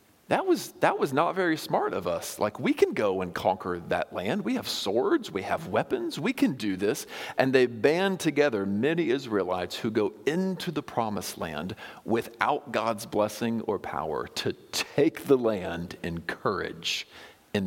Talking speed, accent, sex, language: 175 wpm, American, male, English